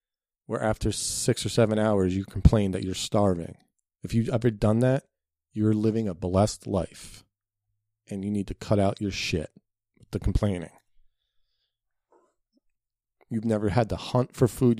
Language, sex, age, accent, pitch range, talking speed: English, male, 40-59, American, 95-110 Hz, 160 wpm